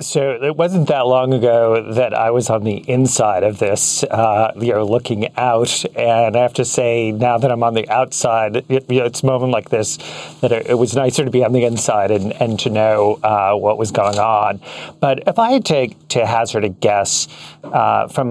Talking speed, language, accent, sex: 215 wpm, English, American, male